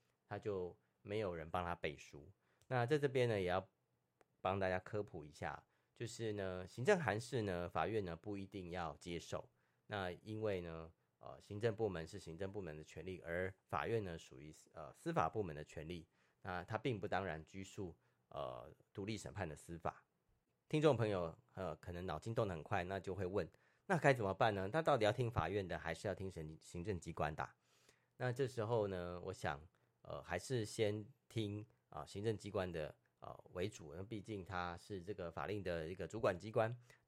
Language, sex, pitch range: Chinese, male, 85-115 Hz